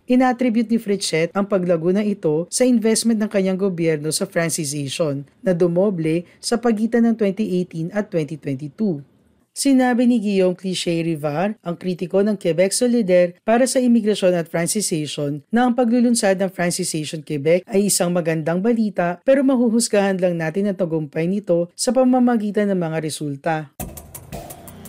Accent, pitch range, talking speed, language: native, 160-210 Hz, 135 wpm, Filipino